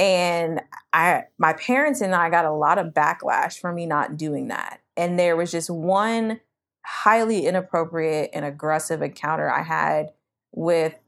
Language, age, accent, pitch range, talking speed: English, 20-39, American, 170-255 Hz, 155 wpm